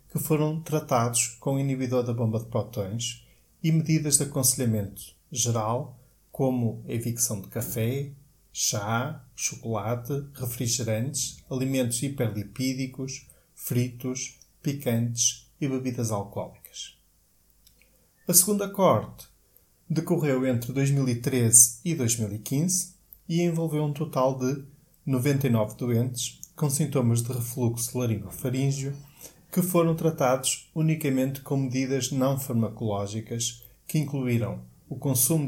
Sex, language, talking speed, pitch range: male, Portuguese, 100 wpm, 120-150 Hz